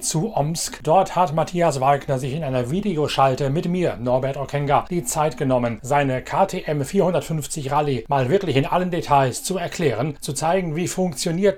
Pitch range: 130-160 Hz